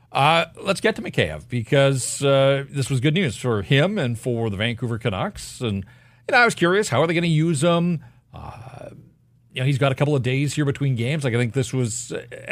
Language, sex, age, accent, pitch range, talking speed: English, male, 40-59, American, 125-160 Hz, 230 wpm